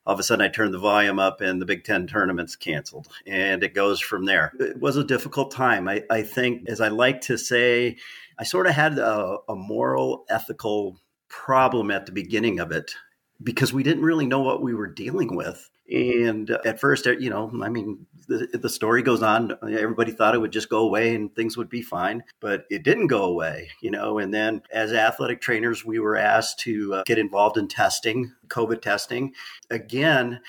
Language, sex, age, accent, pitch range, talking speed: English, male, 40-59, American, 110-135 Hz, 205 wpm